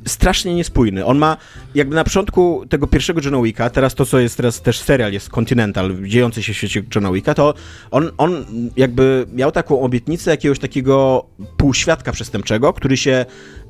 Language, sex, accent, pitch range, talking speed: Polish, male, native, 110-155 Hz, 160 wpm